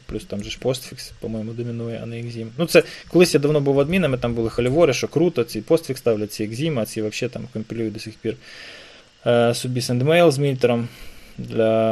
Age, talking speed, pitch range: 20-39, 200 wpm, 115-150 Hz